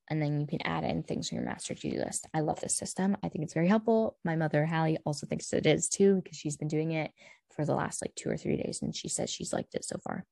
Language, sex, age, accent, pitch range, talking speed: English, female, 10-29, American, 155-180 Hz, 300 wpm